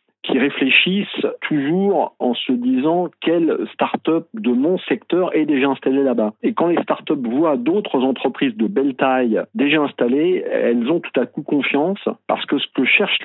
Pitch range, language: 120-200 Hz, French